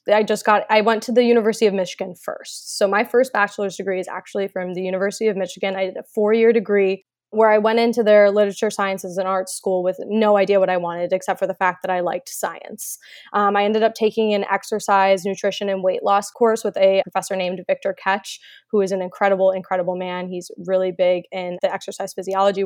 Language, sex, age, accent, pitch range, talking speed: English, female, 20-39, American, 190-220 Hz, 220 wpm